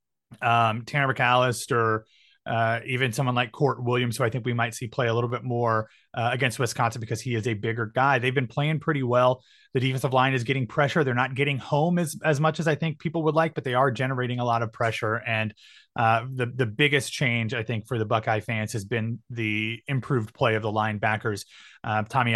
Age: 30-49